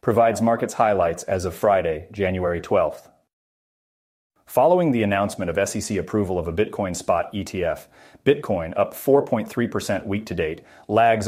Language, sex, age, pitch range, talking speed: English, male, 30-49, 95-110 Hz, 140 wpm